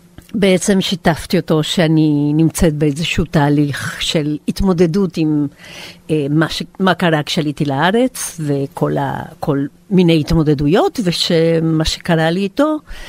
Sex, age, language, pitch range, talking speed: female, 50-69, Hebrew, 150-180 Hz, 110 wpm